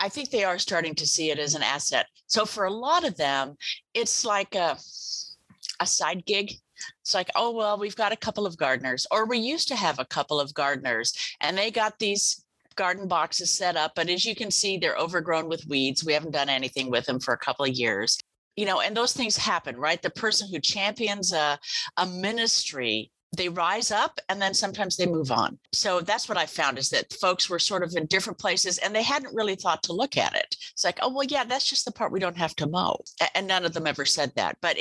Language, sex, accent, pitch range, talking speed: English, female, American, 155-215 Hz, 240 wpm